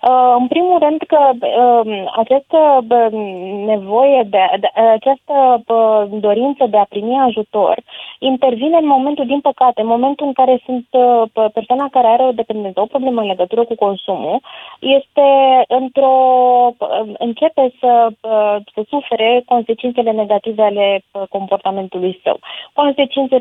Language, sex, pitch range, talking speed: Romanian, female, 210-260 Hz, 140 wpm